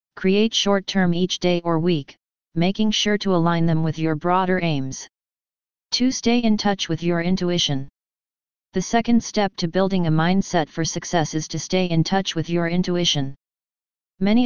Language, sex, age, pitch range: English, female, 30-49, 165-195 Hz